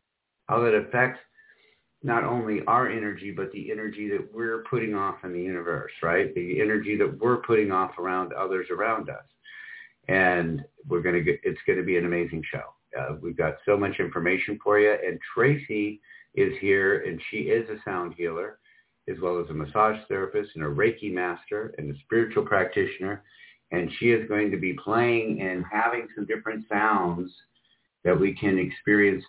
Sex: male